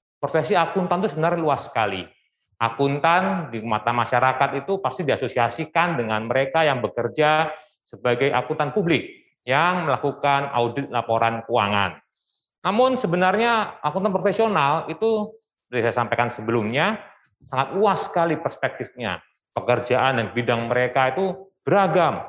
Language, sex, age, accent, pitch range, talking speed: Indonesian, male, 30-49, native, 120-165 Hz, 120 wpm